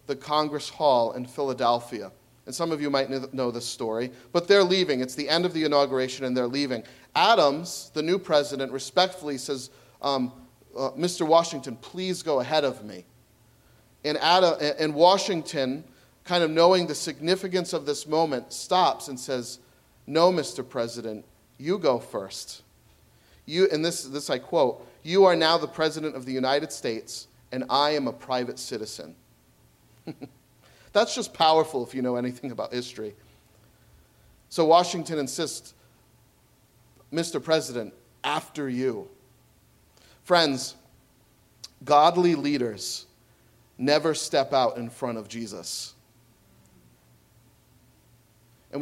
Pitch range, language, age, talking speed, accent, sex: 125-160 Hz, English, 40-59, 135 wpm, American, male